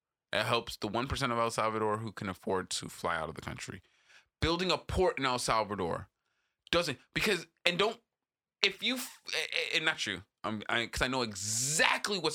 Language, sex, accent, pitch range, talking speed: English, male, American, 125-205 Hz, 180 wpm